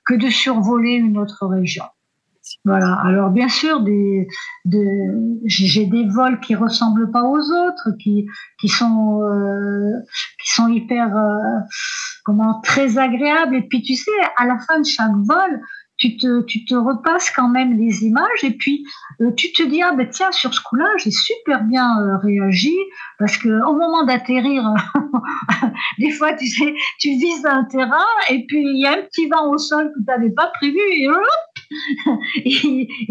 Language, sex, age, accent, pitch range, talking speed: French, female, 50-69, French, 225-310 Hz, 180 wpm